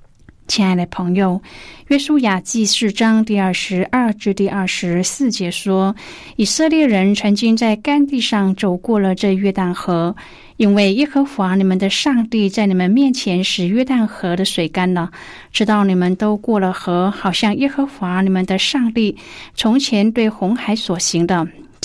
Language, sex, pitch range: Chinese, female, 185-230 Hz